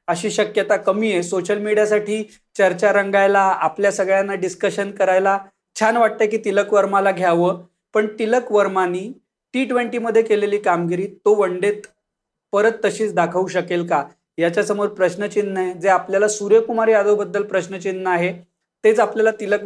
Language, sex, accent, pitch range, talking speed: Marathi, male, native, 185-215 Hz, 90 wpm